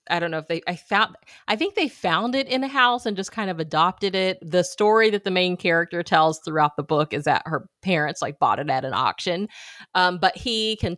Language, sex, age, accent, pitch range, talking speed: English, female, 30-49, American, 160-195 Hz, 245 wpm